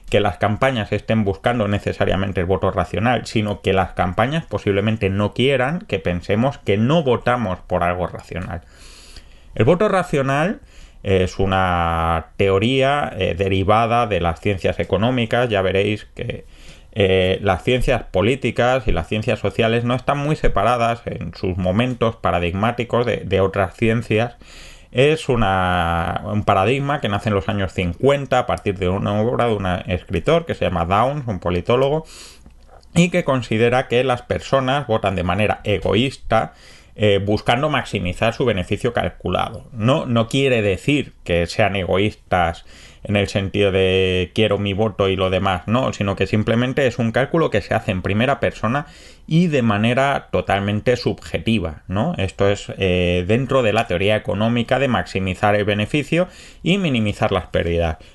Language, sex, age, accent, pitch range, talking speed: Spanish, male, 30-49, Spanish, 95-125 Hz, 150 wpm